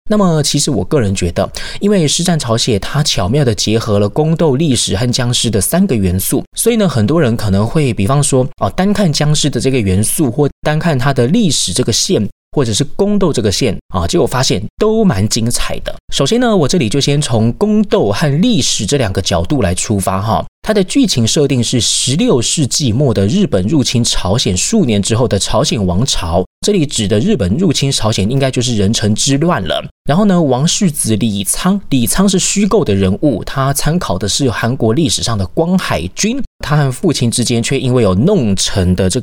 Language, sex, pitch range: Chinese, male, 105-160 Hz